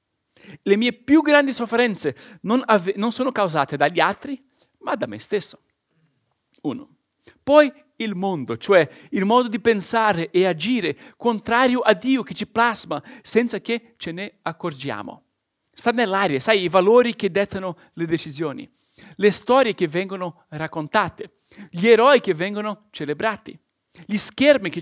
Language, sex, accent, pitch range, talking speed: Italian, male, native, 175-240 Hz, 145 wpm